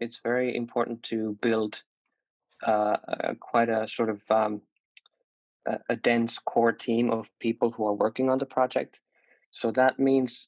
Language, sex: Finnish, male